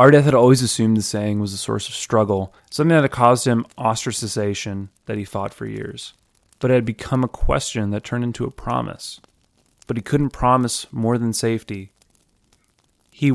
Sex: male